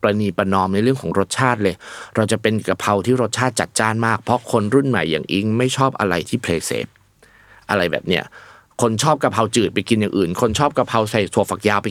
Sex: male